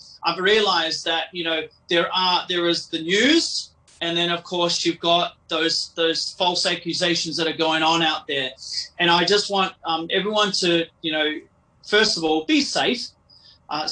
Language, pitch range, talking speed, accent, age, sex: English, 160-180 Hz, 180 wpm, Australian, 30-49, male